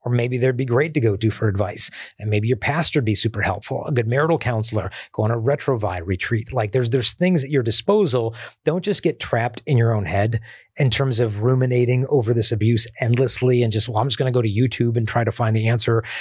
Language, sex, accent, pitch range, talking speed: English, male, American, 110-135 Hz, 240 wpm